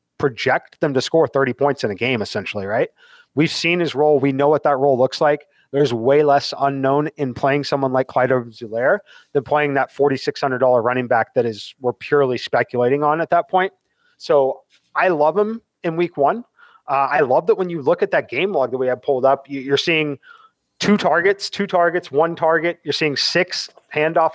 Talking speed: 200 wpm